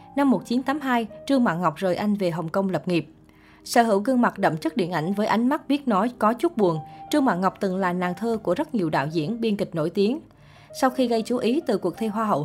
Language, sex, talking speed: Vietnamese, female, 260 wpm